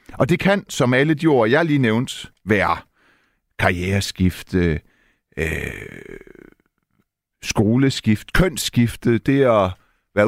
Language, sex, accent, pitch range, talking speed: Danish, male, native, 105-145 Hz, 105 wpm